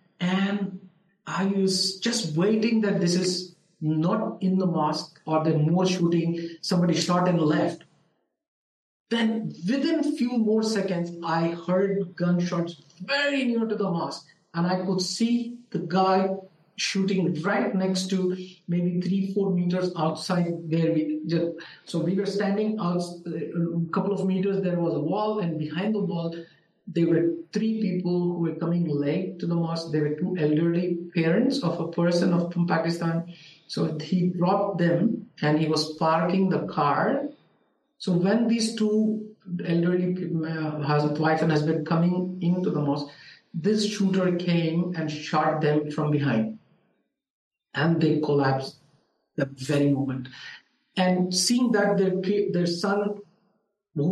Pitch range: 165-195 Hz